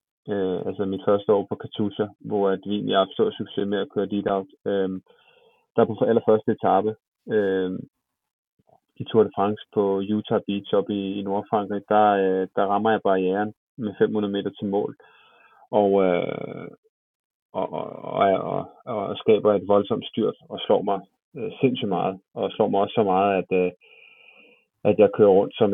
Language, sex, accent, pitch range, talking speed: Danish, male, native, 100-110 Hz, 175 wpm